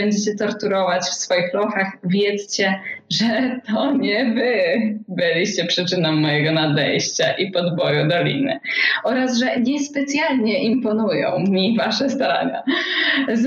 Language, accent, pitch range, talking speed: Polish, native, 180-250 Hz, 110 wpm